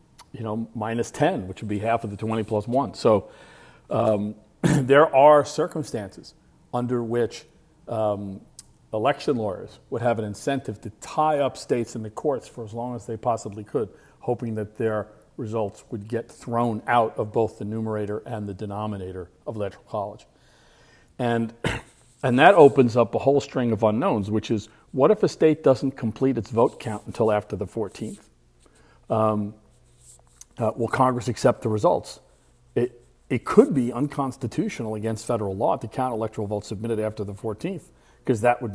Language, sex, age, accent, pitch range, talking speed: English, male, 50-69, American, 105-125 Hz, 170 wpm